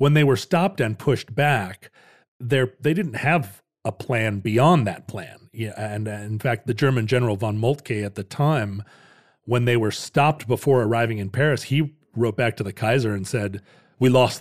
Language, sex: English, male